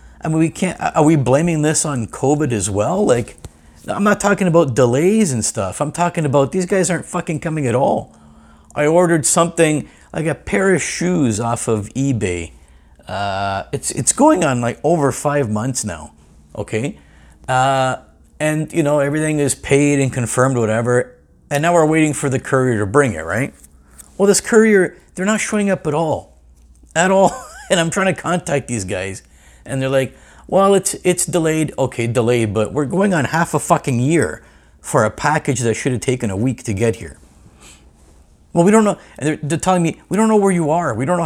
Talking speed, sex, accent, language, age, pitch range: 200 wpm, male, American, English, 50-69, 105-170 Hz